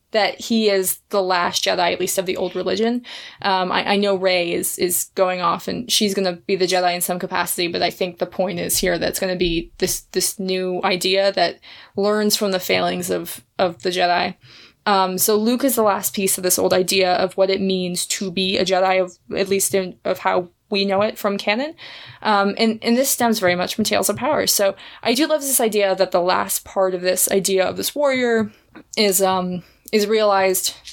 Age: 20-39